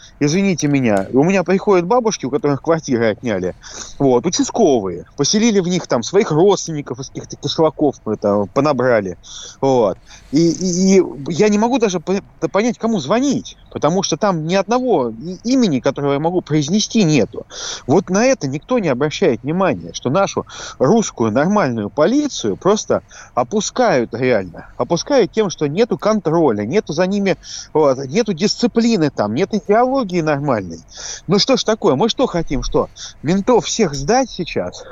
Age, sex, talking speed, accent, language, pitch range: 30-49, male, 145 wpm, native, Russian, 140-210 Hz